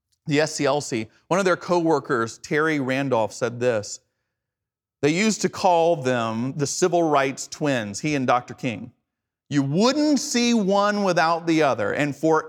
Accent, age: American, 40-59